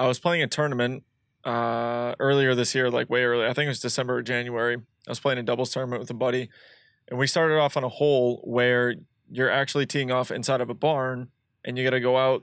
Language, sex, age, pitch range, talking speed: English, male, 20-39, 125-135 Hz, 240 wpm